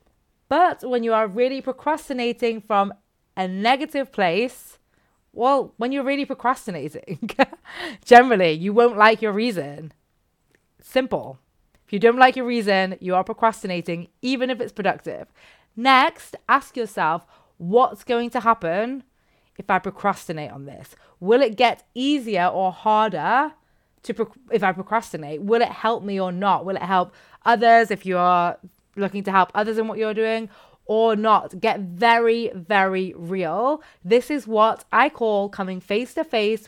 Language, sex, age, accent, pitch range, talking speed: English, female, 20-39, British, 190-245 Hz, 155 wpm